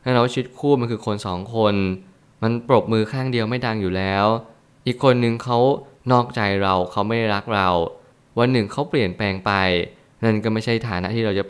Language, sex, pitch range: Thai, male, 100-120 Hz